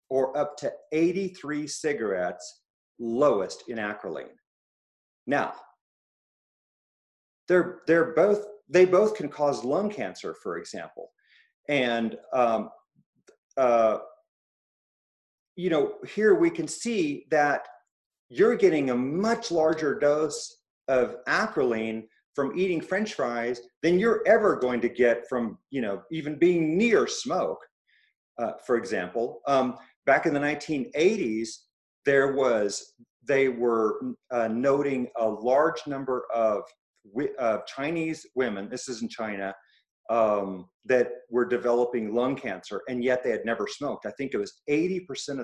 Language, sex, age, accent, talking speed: English, male, 40-59, American, 125 wpm